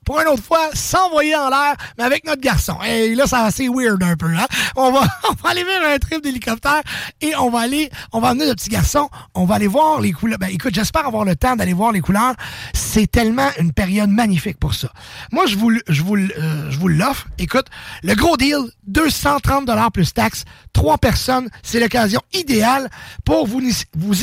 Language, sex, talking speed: English, male, 215 wpm